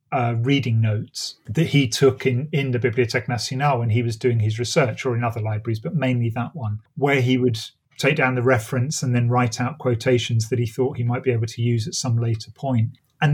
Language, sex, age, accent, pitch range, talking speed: English, male, 30-49, British, 115-135 Hz, 230 wpm